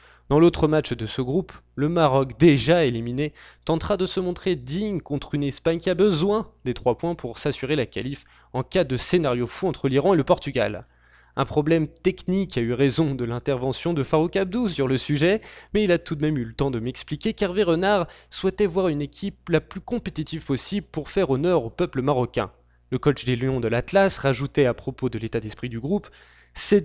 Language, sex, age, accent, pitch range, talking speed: French, male, 20-39, French, 130-180 Hz, 215 wpm